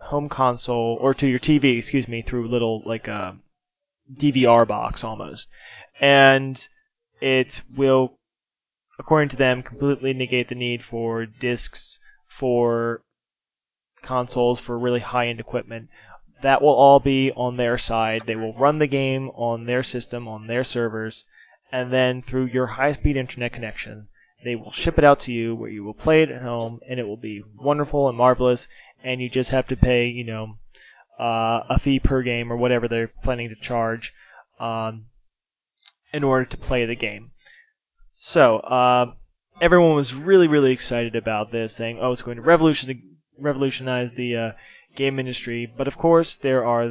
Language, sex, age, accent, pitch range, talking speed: English, male, 20-39, American, 115-140 Hz, 165 wpm